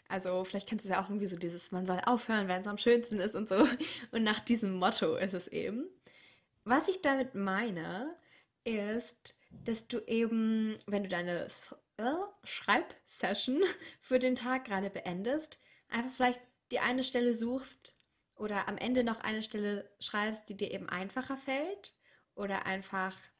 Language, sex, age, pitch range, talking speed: German, female, 20-39, 190-245 Hz, 160 wpm